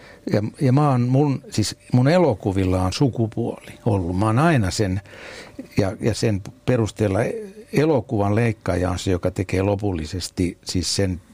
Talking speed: 130 wpm